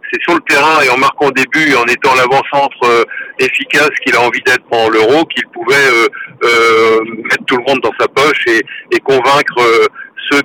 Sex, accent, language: male, French, French